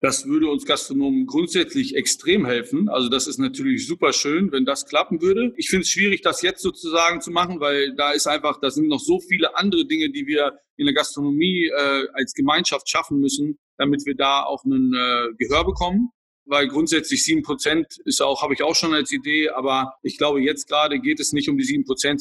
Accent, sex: German, male